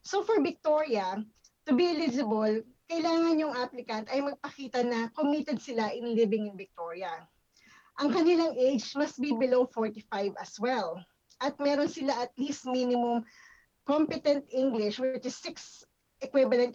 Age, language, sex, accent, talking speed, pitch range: 20-39, Filipino, female, native, 140 wpm, 220-290 Hz